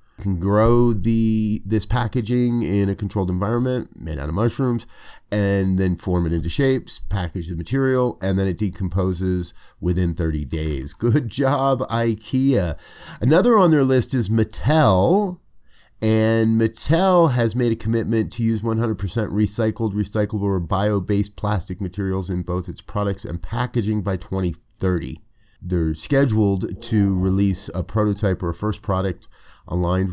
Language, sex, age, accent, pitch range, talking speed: English, male, 30-49, American, 90-110 Hz, 145 wpm